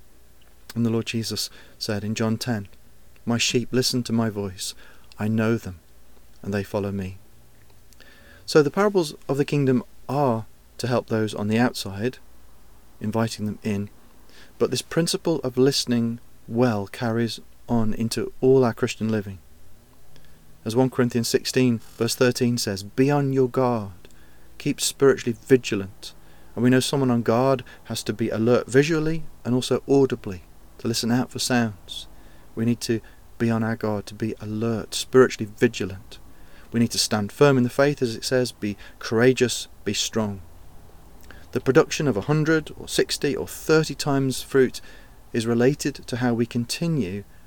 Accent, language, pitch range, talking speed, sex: British, English, 100-130 Hz, 160 wpm, male